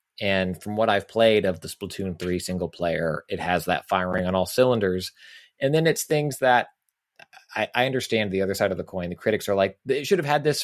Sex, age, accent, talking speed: male, 30-49, American, 230 wpm